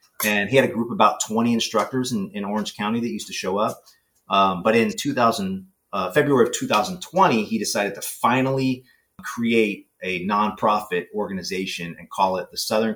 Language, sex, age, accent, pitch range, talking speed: English, male, 30-49, American, 100-150 Hz, 180 wpm